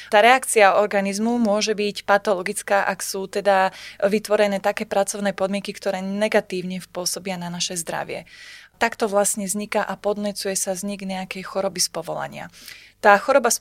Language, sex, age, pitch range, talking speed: Slovak, female, 20-39, 195-210 Hz, 145 wpm